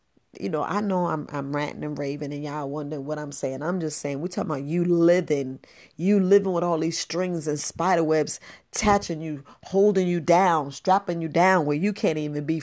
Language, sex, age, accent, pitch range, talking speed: English, female, 40-59, American, 150-195 Hz, 210 wpm